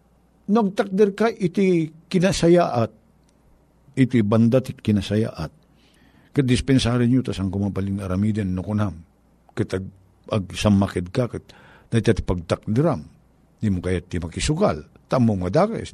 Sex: male